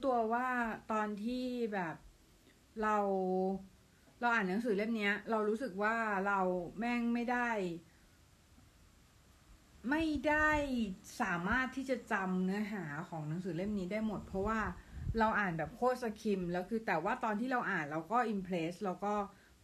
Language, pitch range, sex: Thai, 185-225 Hz, female